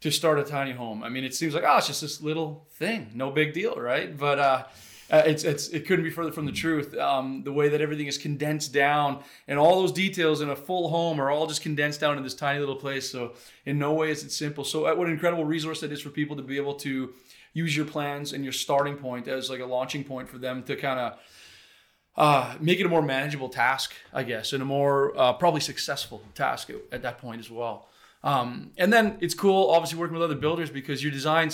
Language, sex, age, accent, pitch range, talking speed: English, male, 20-39, American, 135-155 Hz, 245 wpm